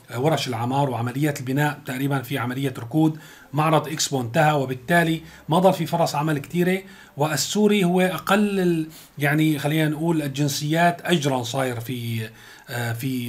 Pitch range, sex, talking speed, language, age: 135-165 Hz, male, 130 wpm, Arabic, 30-49